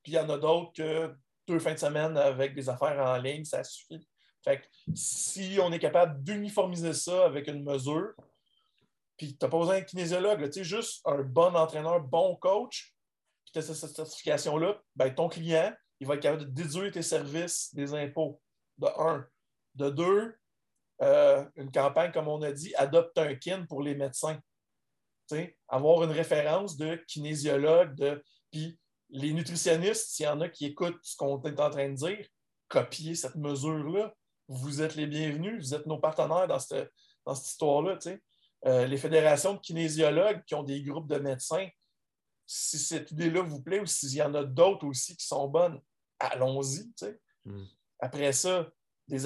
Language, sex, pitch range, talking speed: French, male, 140-170 Hz, 185 wpm